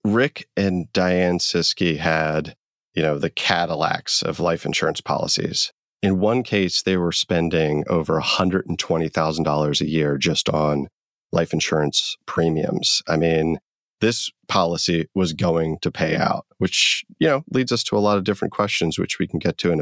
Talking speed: 165 wpm